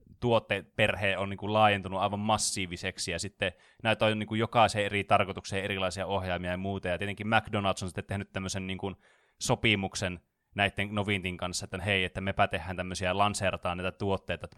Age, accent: 20-39, native